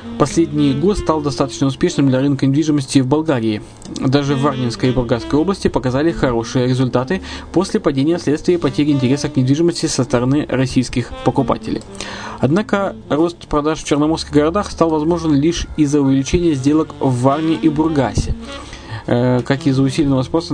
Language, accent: Russian, native